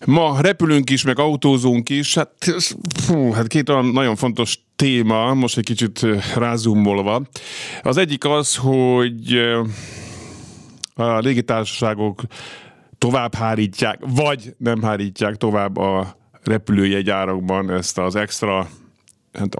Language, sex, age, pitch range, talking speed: Hungarian, male, 50-69, 100-135 Hz, 105 wpm